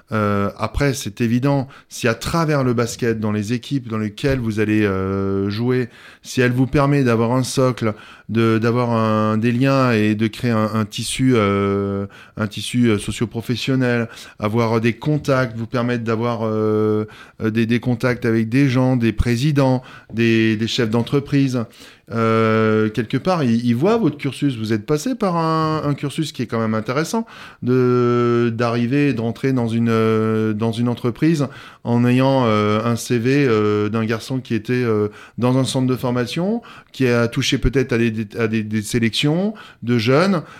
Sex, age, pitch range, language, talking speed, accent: male, 20-39, 110-130 Hz, French, 170 wpm, French